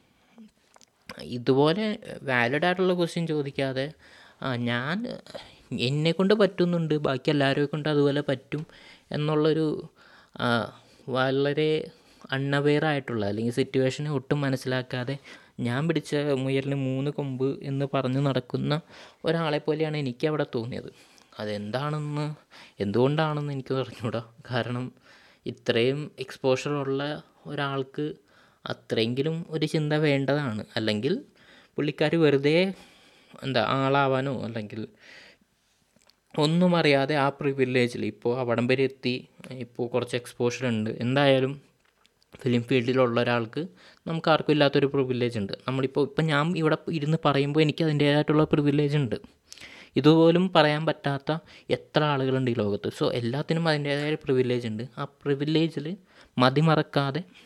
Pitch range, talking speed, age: 130-155 Hz, 95 wpm, 20-39